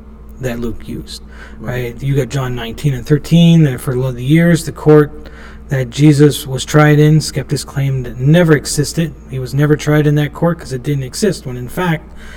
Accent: American